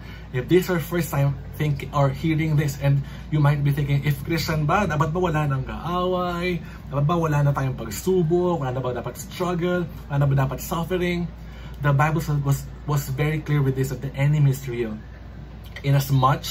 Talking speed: 185 wpm